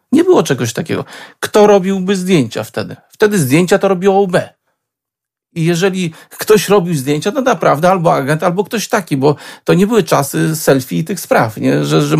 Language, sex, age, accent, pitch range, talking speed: Polish, male, 40-59, native, 145-185 Hz, 180 wpm